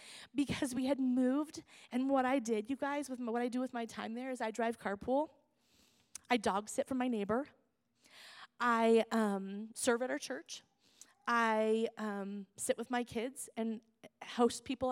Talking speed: 175 wpm